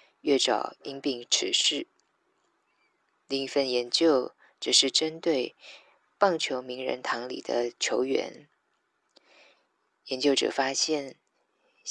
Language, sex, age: Chinese, female, 20-39